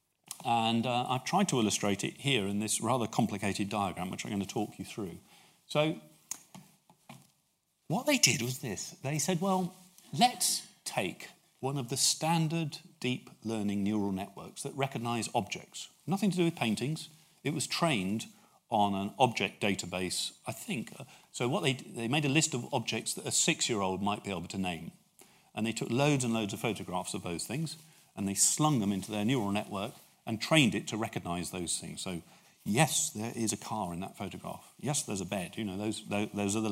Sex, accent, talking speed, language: male, British, 195 wpm, English